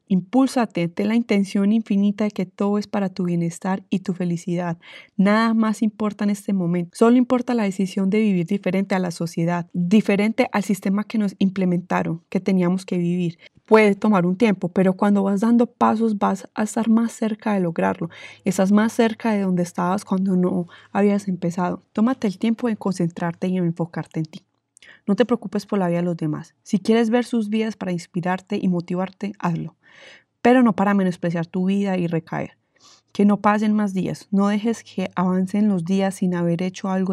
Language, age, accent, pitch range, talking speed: Spanish, 20-39, Colombian, 180-215 Hz, 190 wpm